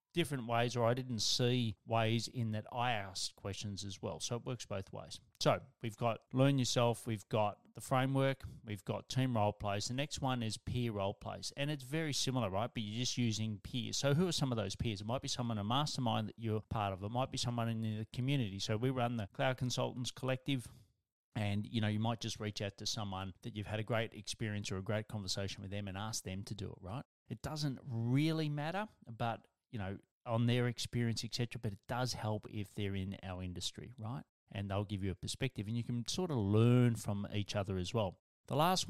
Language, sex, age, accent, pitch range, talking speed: English, male, 30-49, Australian, 105-130 Hz, 230 wpm